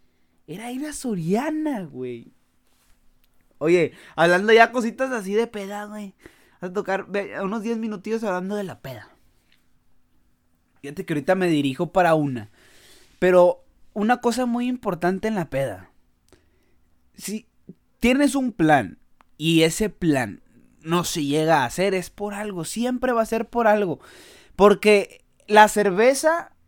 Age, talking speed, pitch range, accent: 20-39, 145 wpm, 160-225 Hz, Mexican